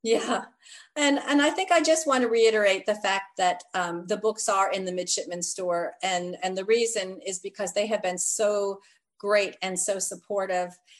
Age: 40-59